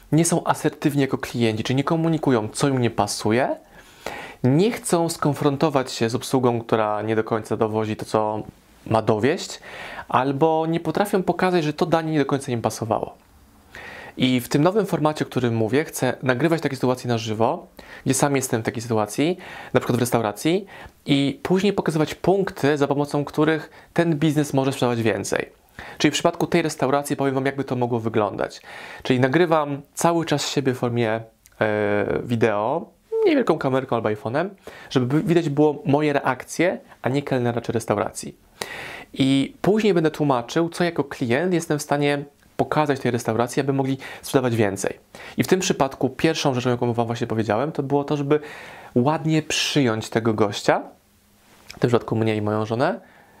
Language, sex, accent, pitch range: Polish, male, native, 120-155 Hz